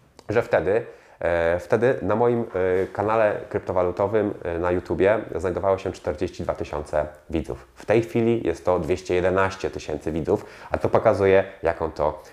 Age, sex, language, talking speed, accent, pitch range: 30-49, male, Polish, 130 wpm, native, 80-95 Hz